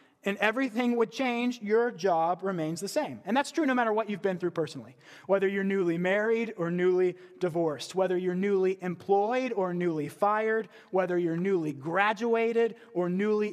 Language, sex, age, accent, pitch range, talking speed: English, male, 30-49, American, 170-210 Hz, 175 wpm